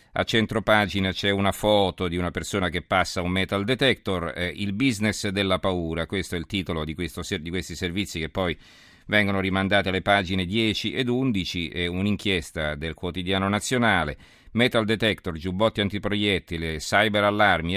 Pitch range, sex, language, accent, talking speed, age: 85-105 Hz, male, Italian, native, 160 wpm, 40-59